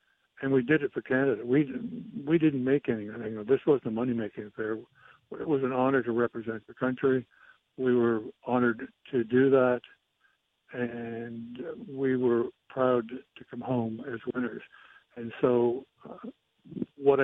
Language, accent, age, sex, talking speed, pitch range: English, American, 60-79, male, 150 wpm, 115-130 Hz